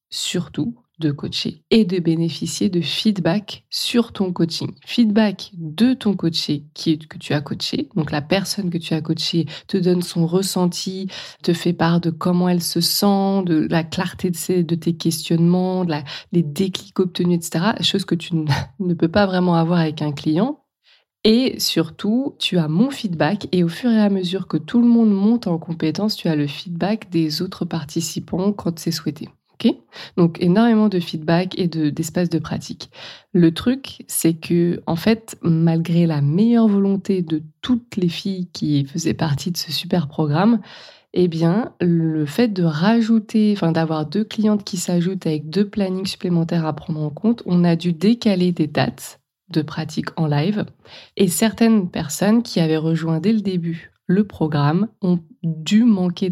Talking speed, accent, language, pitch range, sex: 180 wpm, French, French, 165-200 Hz, female